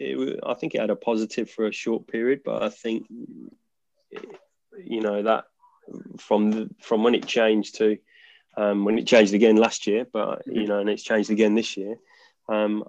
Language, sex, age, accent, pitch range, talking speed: English, male, 20-39, British, 105-125 Hz, 190 wpm